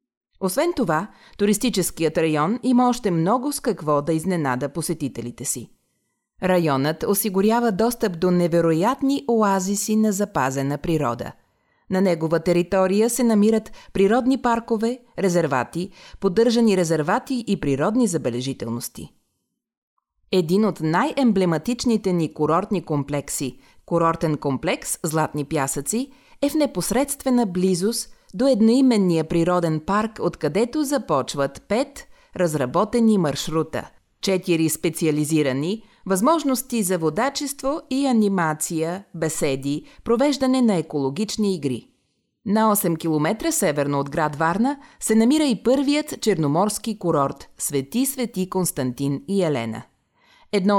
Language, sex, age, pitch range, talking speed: Bulgarian, female, 30-49, 155-230 Hz, 110 wpm